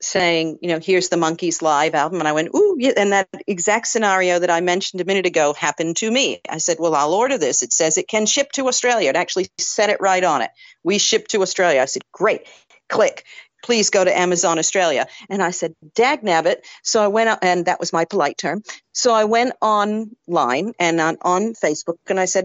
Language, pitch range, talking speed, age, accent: English, 175-220 Hz, 220 wpm, 50-69, American